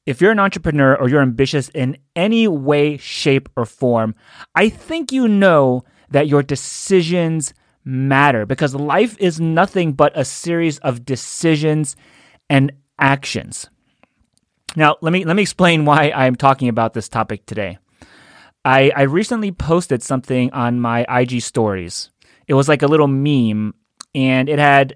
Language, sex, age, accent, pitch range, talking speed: English, male, 30-49, American, 120-150 Hz, 155 wpm